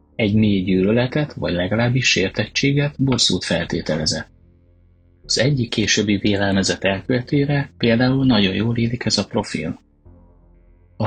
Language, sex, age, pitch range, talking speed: Hungarian, male, 30-49, 90-115 Hz, 115 wpm